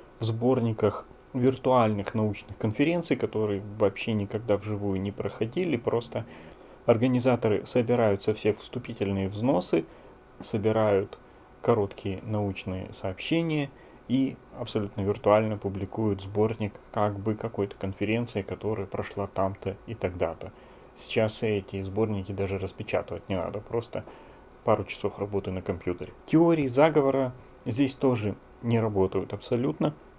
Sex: male